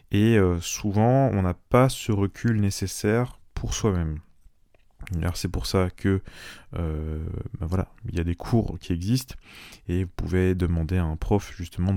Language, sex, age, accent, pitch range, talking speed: French, male, 20-39, French, 85-105 Hz, 170 wpm